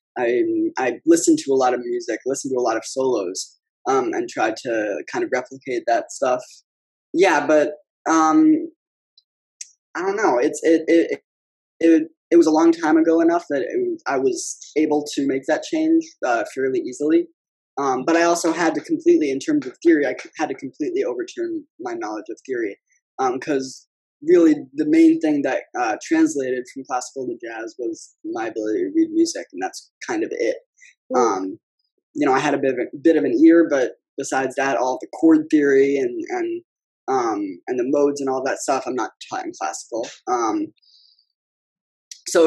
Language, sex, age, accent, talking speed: English, male, 20-39, American, 190 wpm